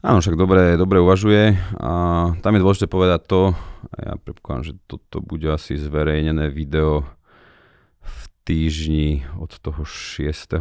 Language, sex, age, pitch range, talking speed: Slovak, male, 30-49, 80-90 Hz, 135 wpm